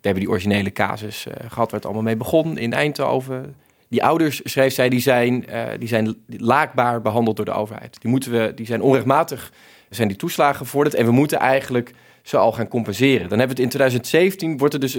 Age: 20-39